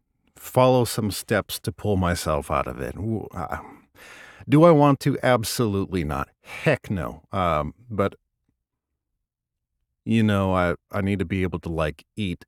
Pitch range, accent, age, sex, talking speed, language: 85-115 Hz, American, 50-69, male, 155 wpm, English